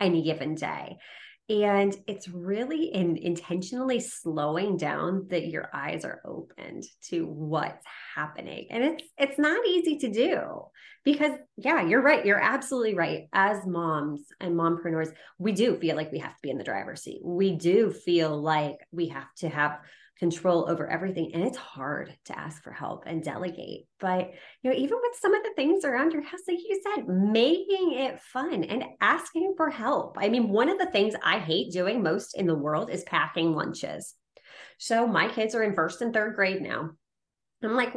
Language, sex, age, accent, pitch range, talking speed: English, female, 30-49, American, 170-275 Hz, 190 wpm